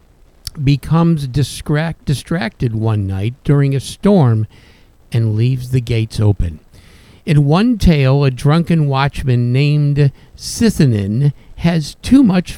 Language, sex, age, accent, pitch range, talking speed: English, male, 50-69, American, 115-165 Hz, 110 wpm